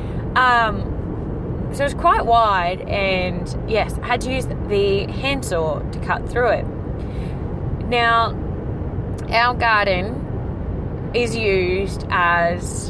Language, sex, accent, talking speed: English, female, Australian, 105 wpm